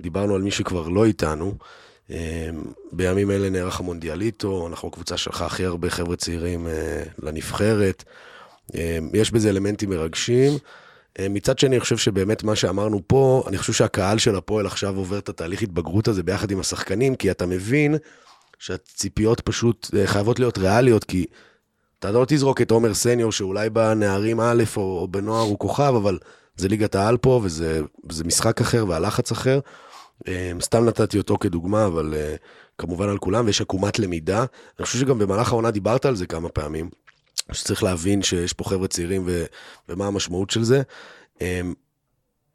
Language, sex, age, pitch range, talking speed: Hebrew, male, 30-49, 95-115 Hz, 155 wpm